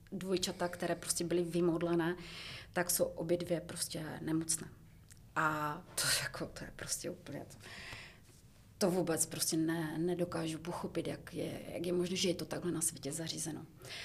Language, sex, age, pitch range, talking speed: Czech, female, 30-49, 165-185 Hz, 155 wpm